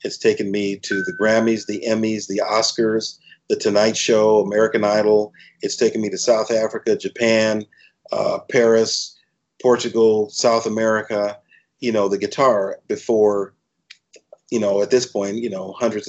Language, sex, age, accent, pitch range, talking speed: English, male, 50-69, American, 105-125 Hz, 150 wpm